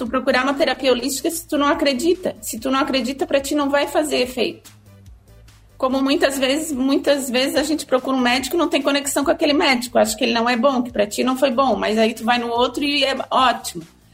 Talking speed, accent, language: 240 wpm, Brazilian, Portuguese